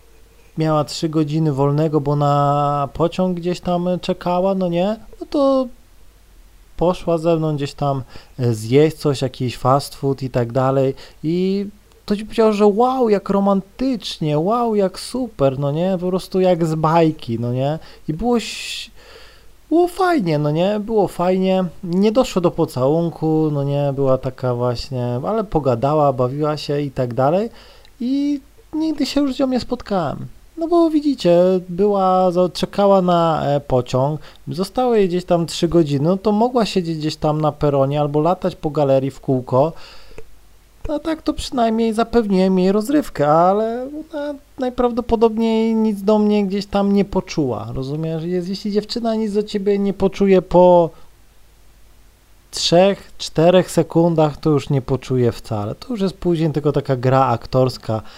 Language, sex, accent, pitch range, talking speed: Polish, male, native, 135-210 Hz, 150 wpm